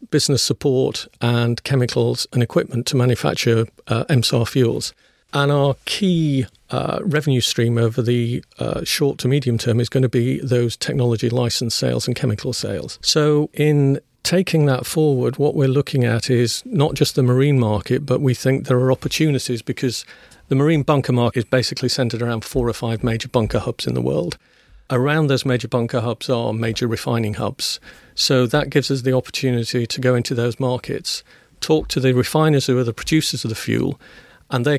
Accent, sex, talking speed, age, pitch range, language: British, male, 185 wpm, 50-69, 120-140 Hz, English